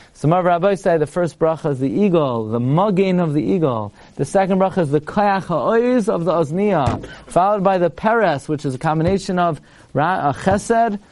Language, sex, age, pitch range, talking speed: English, male, 30-49, 140-200 Hz, 180 wpm